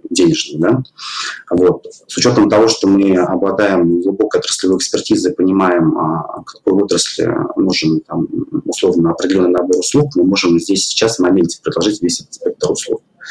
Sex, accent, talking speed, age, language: male, native, 125 wpm, 30-49, Russian